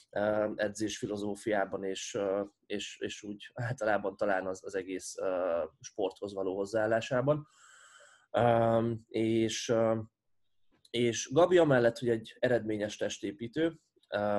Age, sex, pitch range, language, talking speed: 20-39, male, 100-115 Hz, Hungarian, 90 wpm